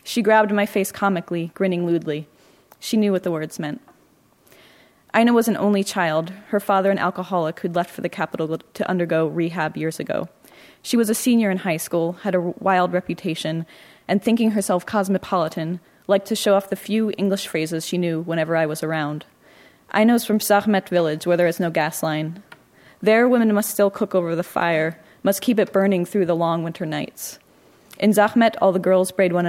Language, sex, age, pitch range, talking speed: English, female, 20-39, 165-200 Hz, 195 wpm